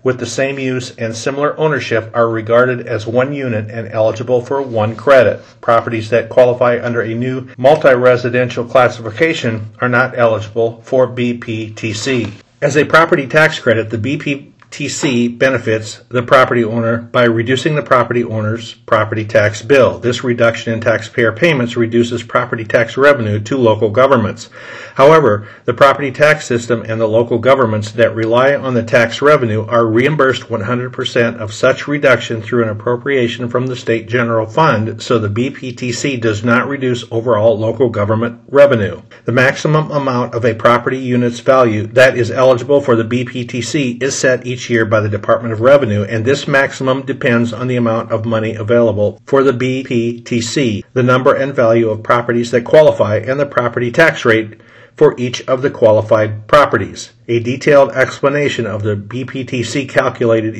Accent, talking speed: American, 160 wpm